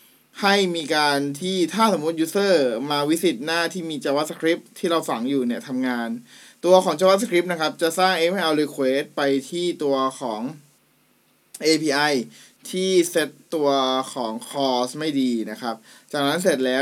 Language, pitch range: Thai, 135-175 Hz